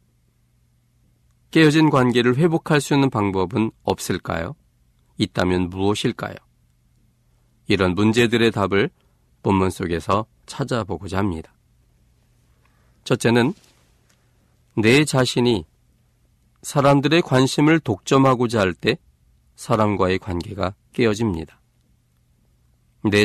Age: 40-59